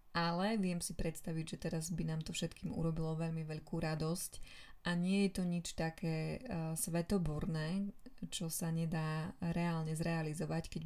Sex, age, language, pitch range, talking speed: female, 20-39, Slovak, 160-185 Hz, 150 wpm